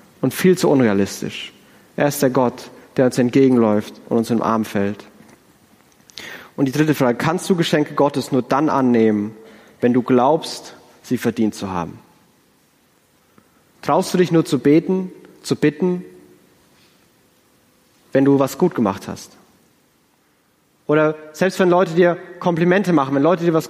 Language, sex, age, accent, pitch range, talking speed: German, male, 30-49, German, 125-160 Hz, 150 wpm